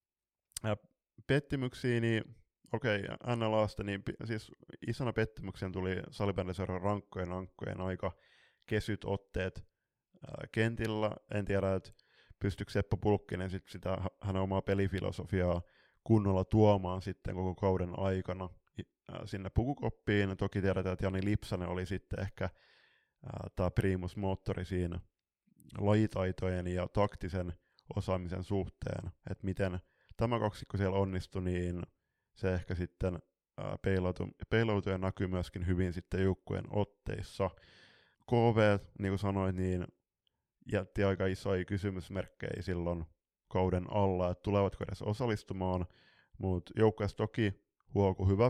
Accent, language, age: native, Finnish, 20-39